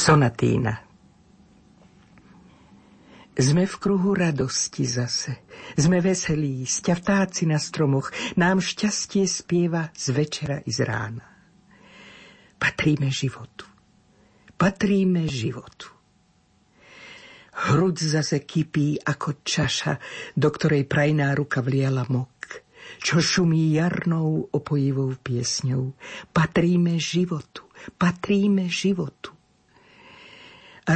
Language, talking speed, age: Slovak, 85 wpm, 50-69